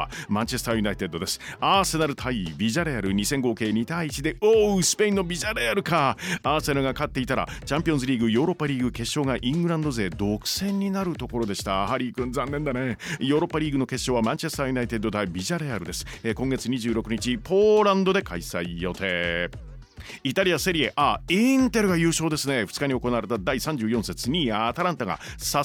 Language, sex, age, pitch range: Japanese, male, 40-59, 115-165 Hz